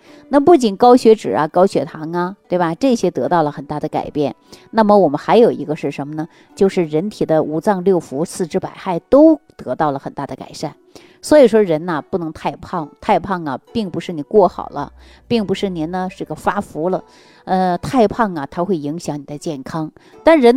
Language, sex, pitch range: Chinese, female, 160-225 Hz